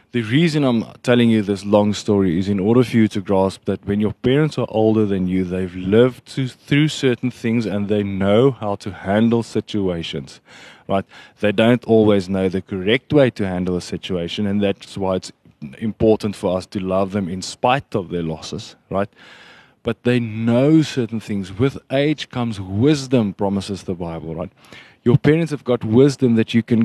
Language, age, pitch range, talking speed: English, 20-39, 100-120 Hz, 190 wpm